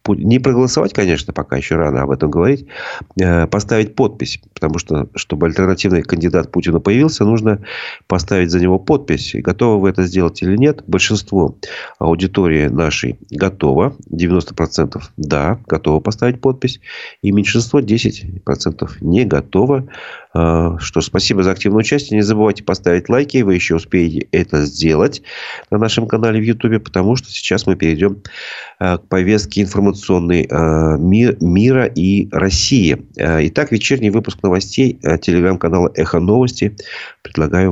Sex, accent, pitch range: male, native, 85-110 Hz